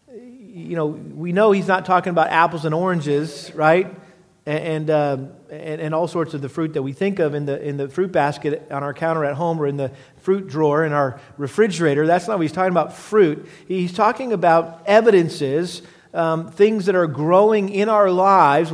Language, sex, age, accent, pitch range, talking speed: English, male, 40-59, American, 155-190 Hz, 205 wpm